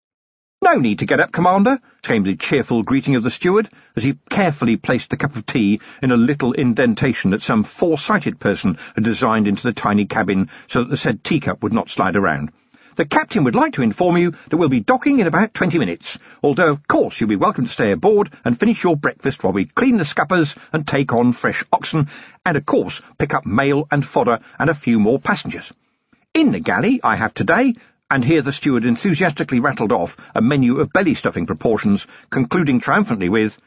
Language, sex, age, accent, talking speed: English, male, 50-69, British, 205 wpm